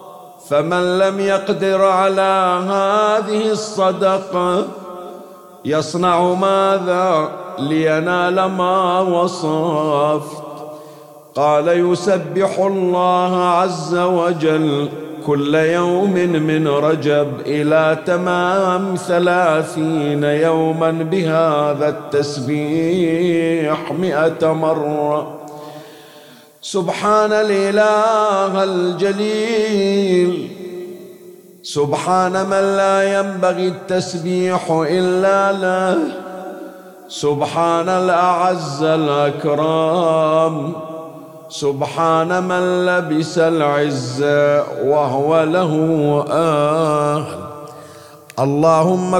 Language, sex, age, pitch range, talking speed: Arabic, male, 50-69, 155-185 Hz, 60 wpm